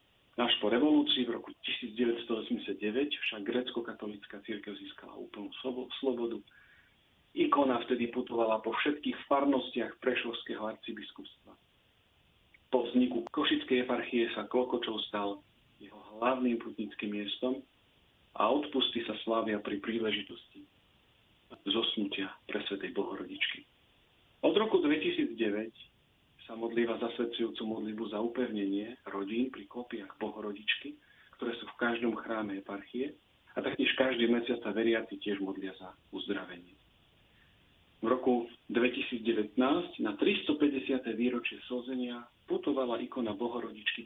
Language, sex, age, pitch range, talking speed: Slovak, male, 40-59, 110-125 Hz, 105 wpm